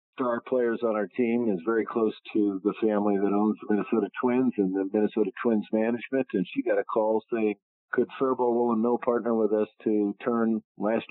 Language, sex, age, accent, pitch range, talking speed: English, male, 50-69, American, 100-125 Hz, 205 wpm